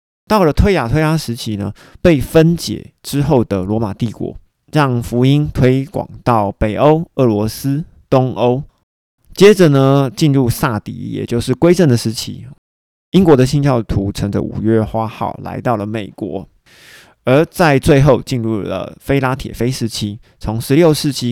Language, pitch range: Chinese, 105-135 Hz